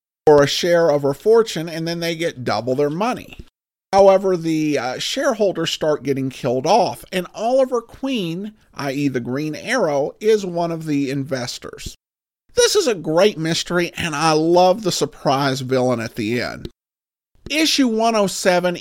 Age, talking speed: 50-69, 155 wpm